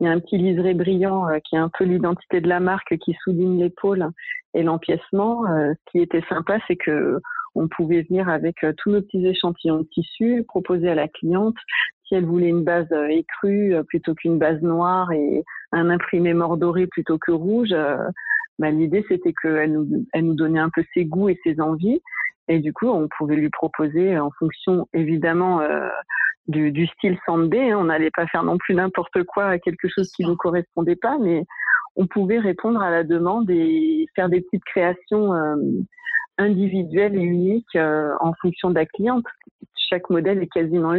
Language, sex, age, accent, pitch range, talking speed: French, female, 40-59, French, 165-195 Hz, 185 wpm